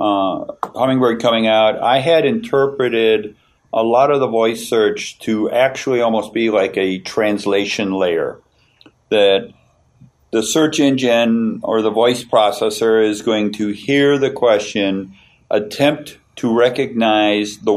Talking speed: 130 wpm